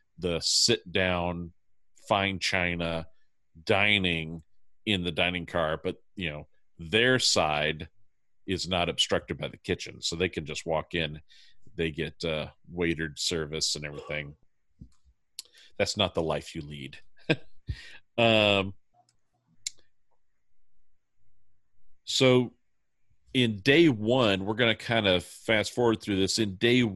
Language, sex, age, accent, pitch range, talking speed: English, male, 40-59, American, 85-100 Hz, 125 wpm